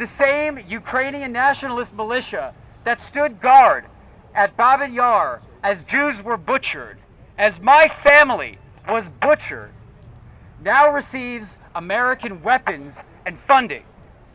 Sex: male